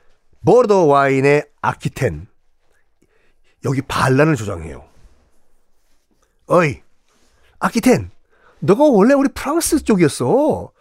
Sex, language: male, Korean